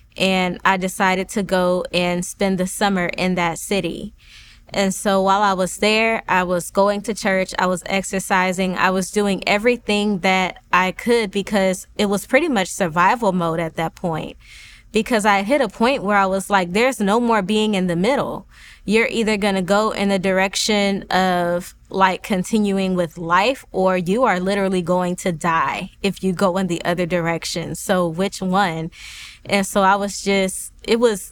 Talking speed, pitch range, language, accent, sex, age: 180 wpm, 180-205 Hz, English, American, female, 20-39